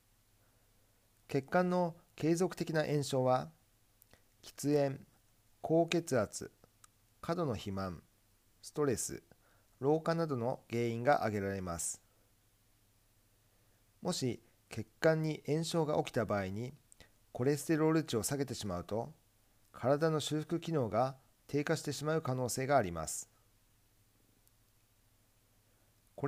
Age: 50-69